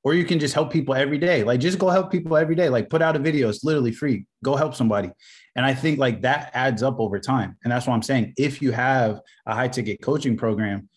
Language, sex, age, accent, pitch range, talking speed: English, male, 20-39, American, 110-135 Hz, 255 wpm